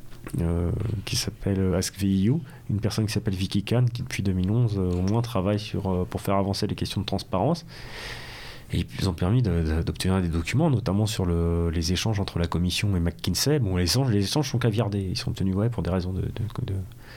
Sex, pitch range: male, 90-120 Hz